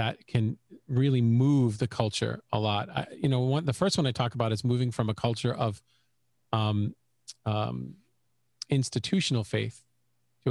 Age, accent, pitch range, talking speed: 40-59, American, 115-135 Hz, 165 wpm